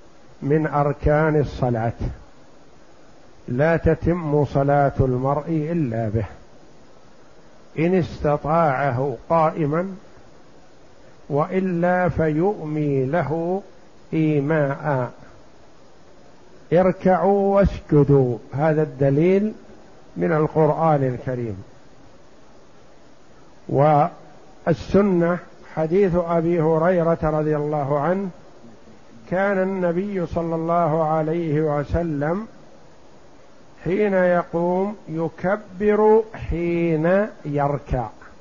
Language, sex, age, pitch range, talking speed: Arabic, male, 50-69, 145-180 Hz, 65 wpm